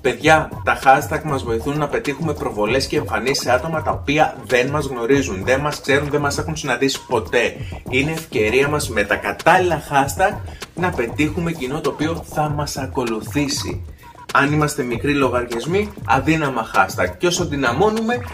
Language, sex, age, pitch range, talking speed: Greek, male, 30-49, 115-155 Hz, 160 wpm